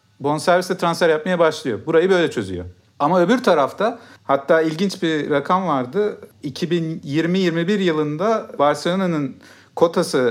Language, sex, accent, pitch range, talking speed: Turkish, male, native, 135-190 Hz, 115 wpm